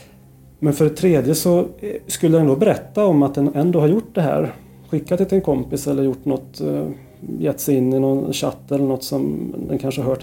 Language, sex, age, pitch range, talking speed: Swedish, male, 30-49, 125-150 Hz, 225 wpm